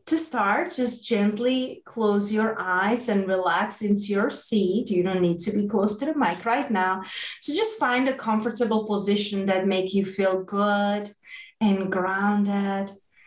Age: 30-49